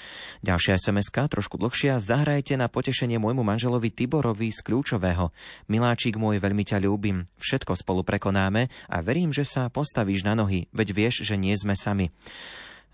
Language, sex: Slovak, male